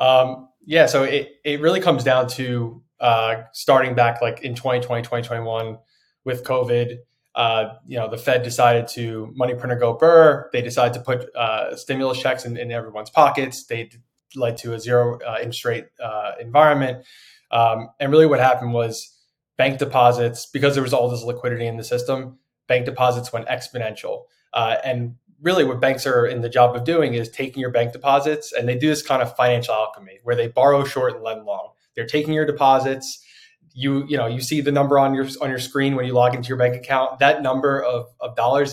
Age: 20-39